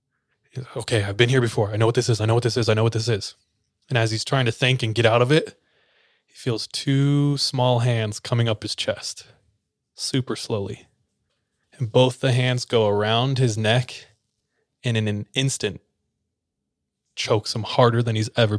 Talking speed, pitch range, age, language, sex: 195 wpm, 110-130 Hz, 20-39, English, male